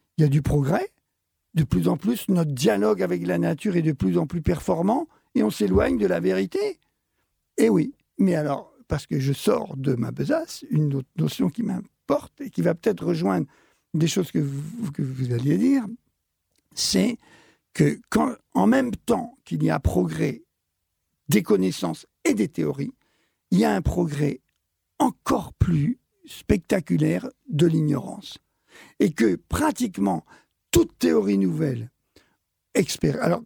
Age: 60-79